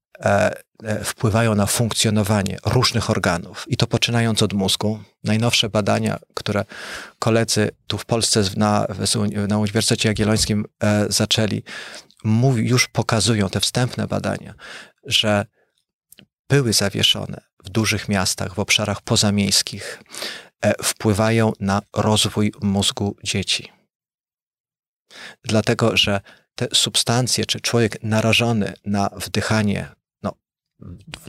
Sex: male